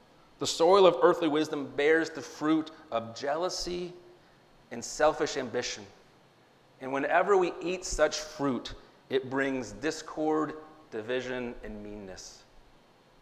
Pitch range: 125-160 Hz